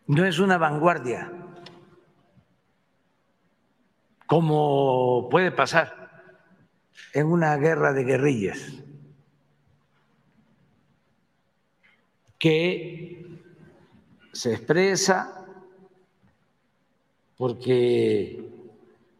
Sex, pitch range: male, 135-175 Hz